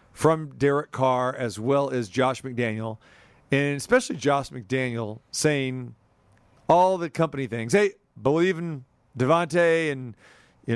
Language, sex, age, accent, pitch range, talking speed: English, male, 40-59, American, 125-160 Hz, 130 wpm